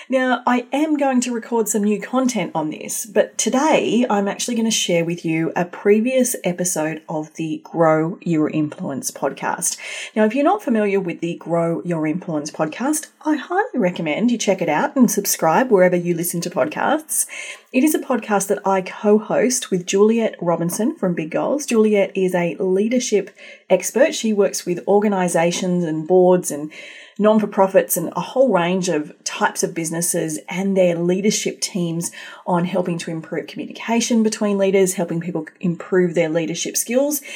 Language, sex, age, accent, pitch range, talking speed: English, female, 30-49, Australian, 170-230 Hz, 170 wpm